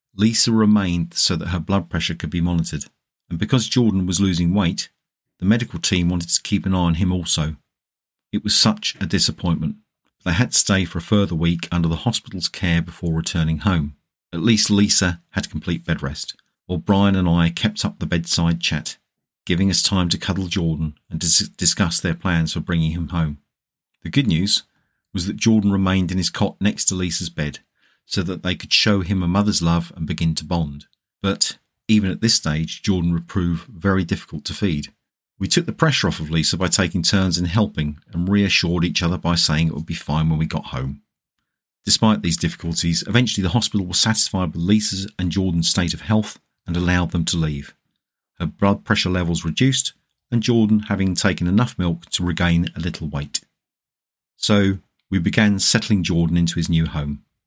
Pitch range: 85-100 Hz